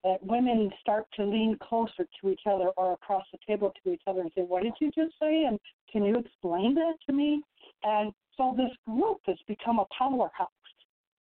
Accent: American